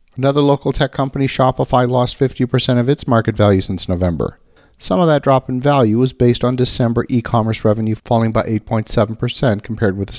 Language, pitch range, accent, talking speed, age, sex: English, 110-140 Hz, American, 185 wpm, 50-69, male